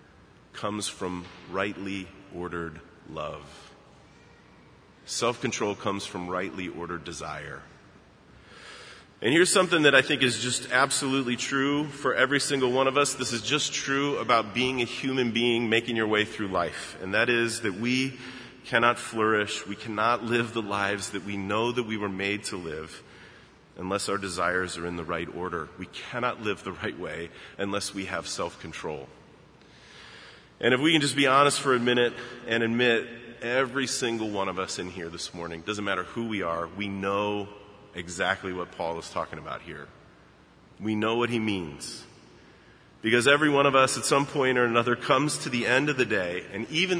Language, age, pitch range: English, 30-49, 100-125 Hz